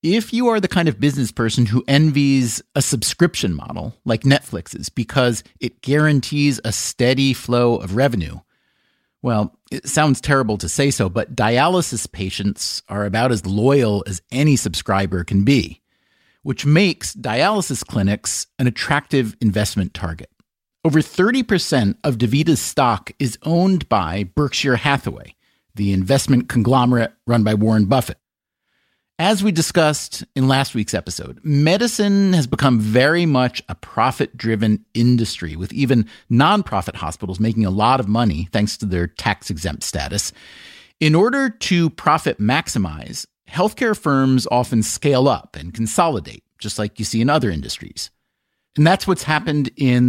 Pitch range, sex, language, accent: 105-145 Hz, male, English, American